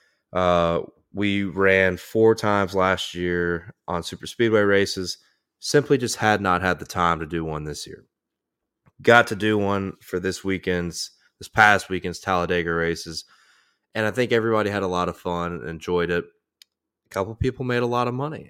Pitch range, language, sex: 85-110 Hz, English, male